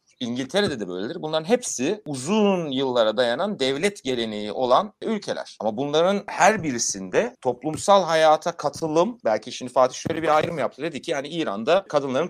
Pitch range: 145-200 Hz